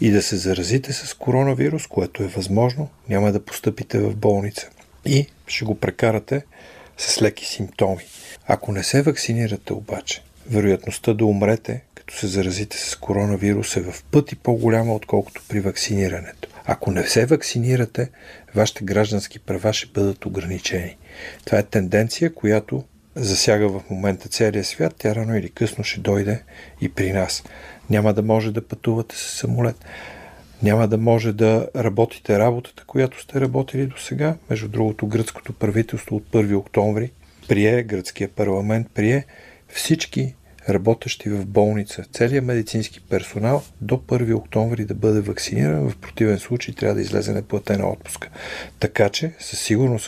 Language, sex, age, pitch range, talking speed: Bulgarian, male, 50-69, 100-120 Hz, 145 wpm